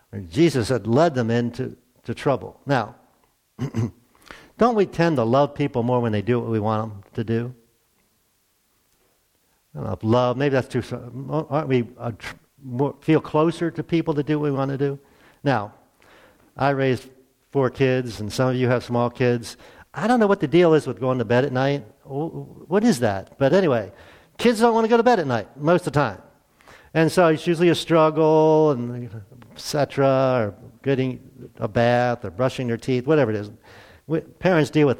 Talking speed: 190 wpm